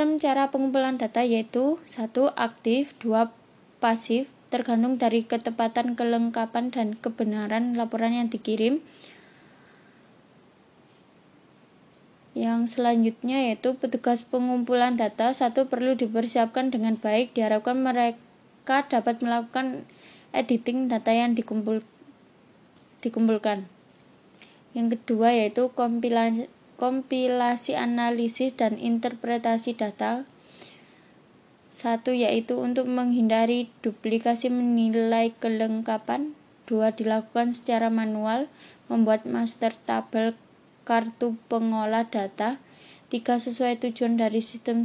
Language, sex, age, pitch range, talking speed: Indonesian, female, 20-39, 225-250 Hz, 90 wpm